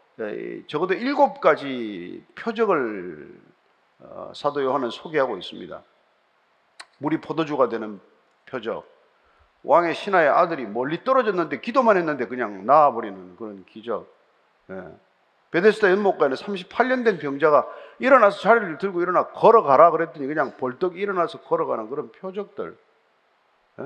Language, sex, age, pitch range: Korean, male, 40-59, 175-280 Hz